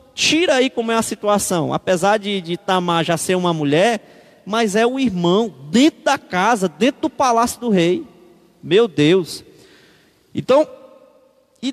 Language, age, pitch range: Portuguese, 20-39, 190-245 Hz